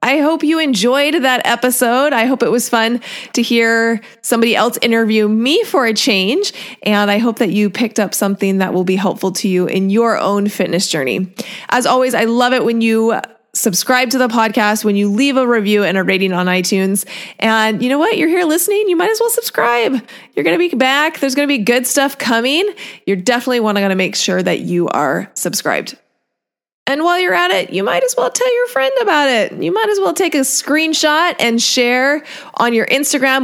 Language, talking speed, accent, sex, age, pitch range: English, 215 wpm, American, female, 30-49, 205-270 Hz